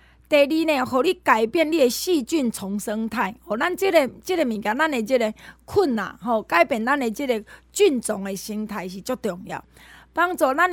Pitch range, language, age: 205-275 Hz, Chinese, 20-39